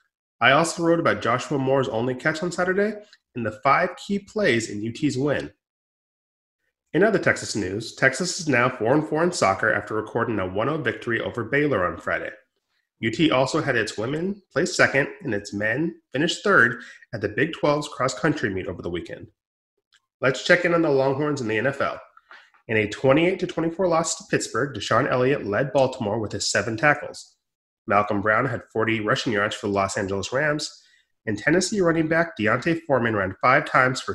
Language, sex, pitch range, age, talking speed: English, male, 110-165 Hz, 30-49, 180 wpm